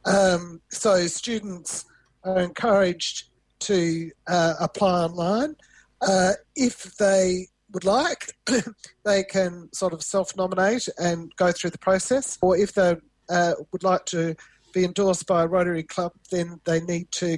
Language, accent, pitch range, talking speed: English, Australian, 165-190 Hz, 140 wpm